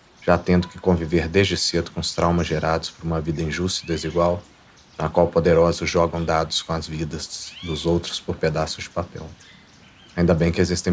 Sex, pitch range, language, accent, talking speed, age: male, 80-90 Hz, Portuguese, Brazilian, 185 wpm, 40-59